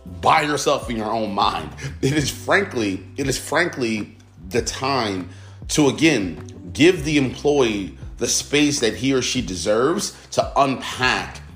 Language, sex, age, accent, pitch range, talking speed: English, male, 30-49, American, 100-135 Hz, 145 wpm